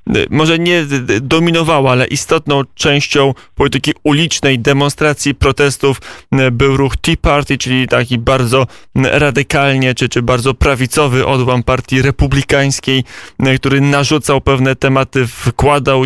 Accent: native